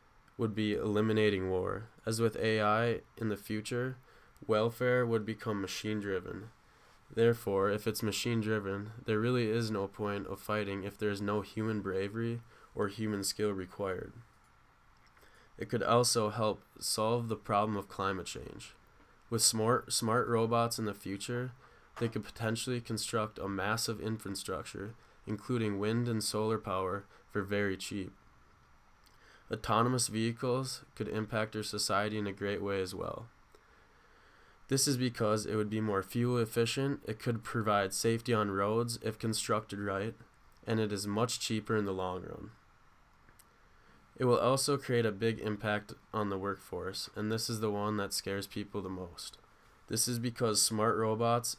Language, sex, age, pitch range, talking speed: English, male, 20-39, 100-115 Hz, 155 wpm